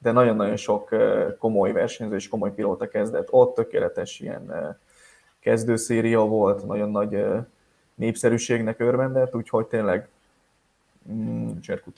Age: 20-39